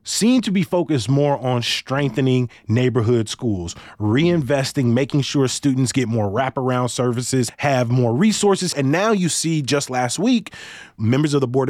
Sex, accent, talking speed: male, American, 160 wpm